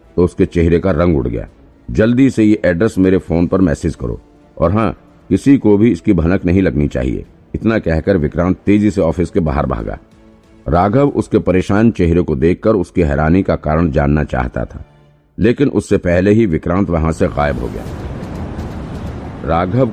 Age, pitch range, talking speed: 50-69, 80-105 Hz, 100 wpm